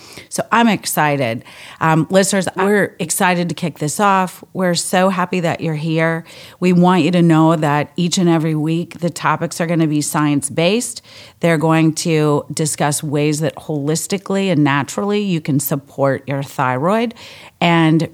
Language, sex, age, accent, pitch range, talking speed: English, female, 40-59, American, 150-180 Hz, 160 wpm